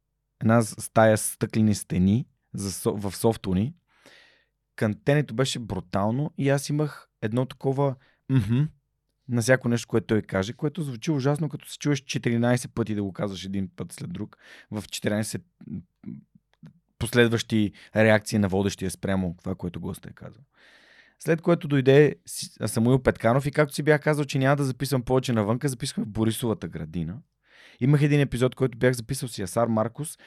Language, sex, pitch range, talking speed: Bulgarian, male, 110-140 Hz, 155 wpm